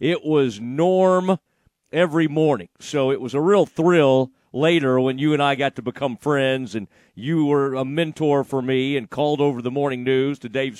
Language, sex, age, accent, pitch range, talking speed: English, male, 40-59, American, 140-185 Hz, 195 wpm